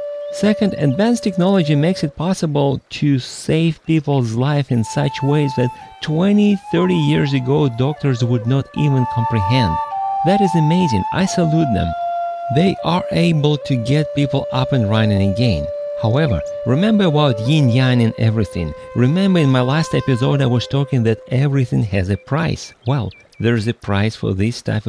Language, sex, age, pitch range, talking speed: English, male, 40-59, 120-165 Hz, 155 wpm